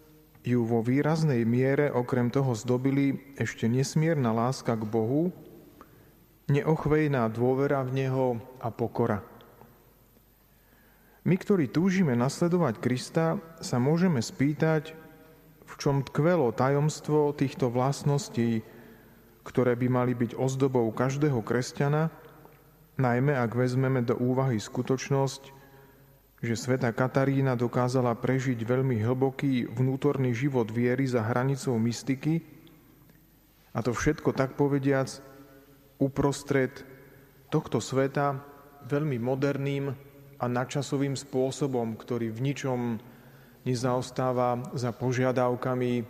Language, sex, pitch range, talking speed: Slovak, male, 125-145 Hz, 100 wpm